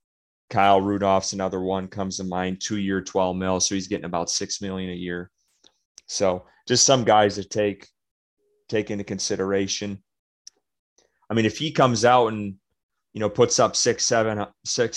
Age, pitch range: 30-49, 95-110 Hz